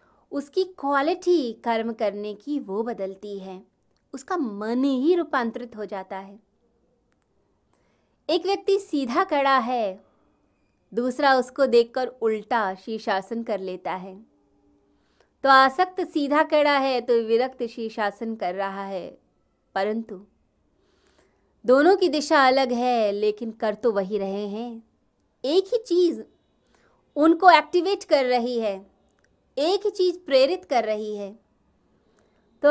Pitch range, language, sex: 210-285 Hz, Hindi, female